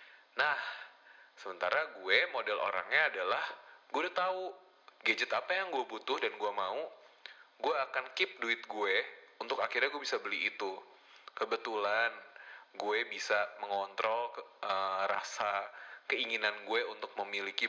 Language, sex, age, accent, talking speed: Indonesian, male, 30-49, native, 130 wpm